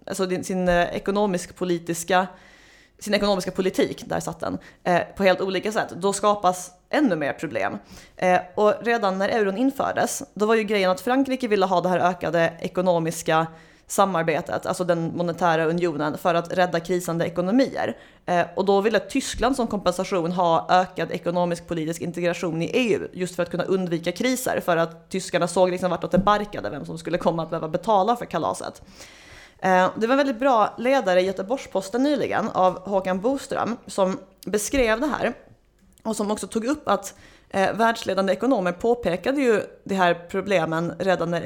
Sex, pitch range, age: female, 175-210 Hz, 20-39